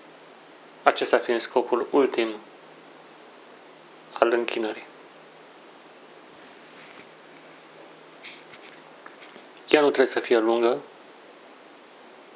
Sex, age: male, 40-59